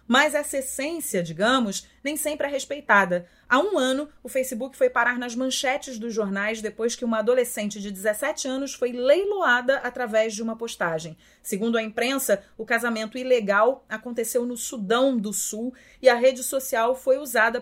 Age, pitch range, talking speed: 30-49, 210-255 Hz, 165 wpm